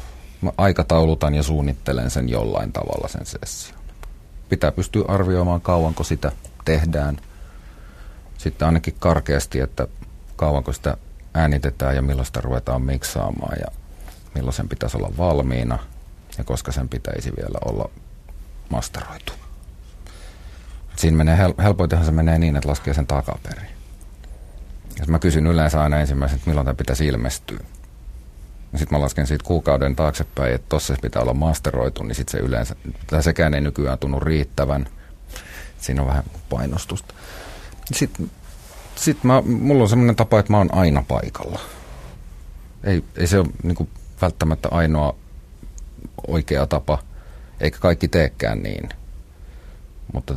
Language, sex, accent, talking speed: Finnish, male, native, 130 wpm